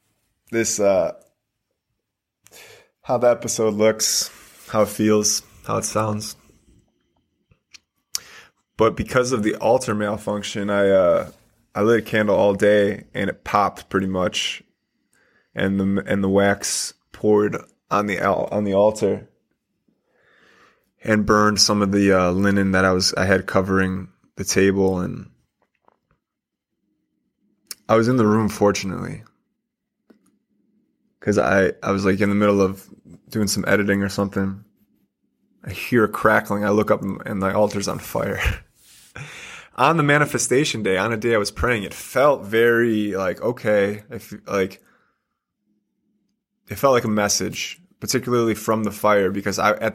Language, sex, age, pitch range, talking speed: English, male, 20-39, 100-110 Hz, 145 wpm